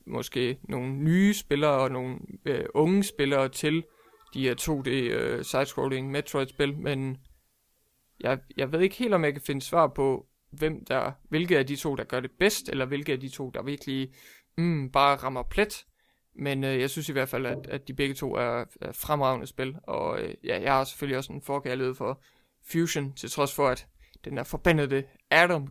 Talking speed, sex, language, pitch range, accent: 200 wpm, male, English, 130-150 Hz, Danish